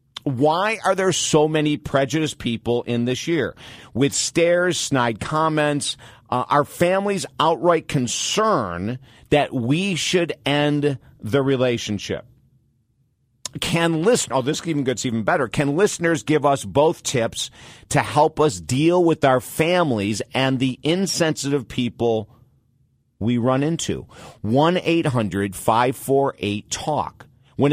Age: 50-69